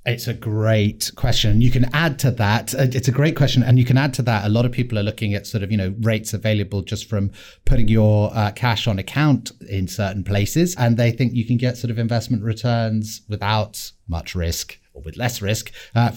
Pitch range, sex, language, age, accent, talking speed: 110-140 Hz, male, English, 30-49, British, 225 wpm